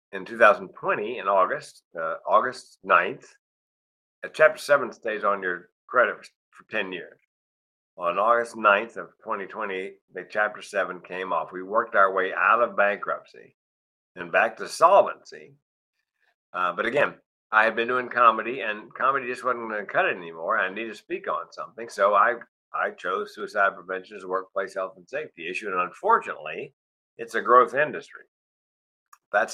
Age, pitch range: 50-69, 90-135 Hz